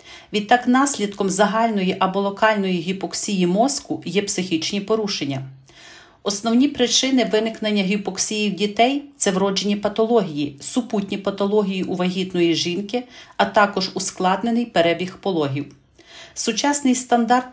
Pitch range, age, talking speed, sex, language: 180-220 Hz, 40-59, 110 wpm, female, Ukrainian